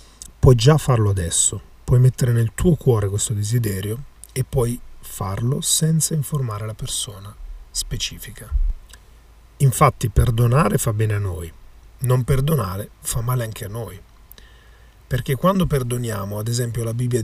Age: 40-59